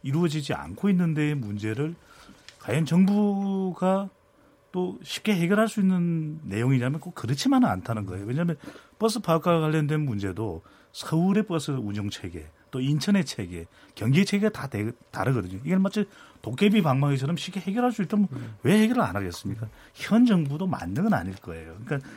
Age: 40-59